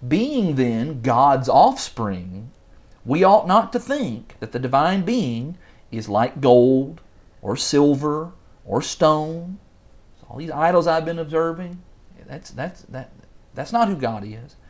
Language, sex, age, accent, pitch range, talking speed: English, male, 40-59, American, 125-175 Hz, 135 wpm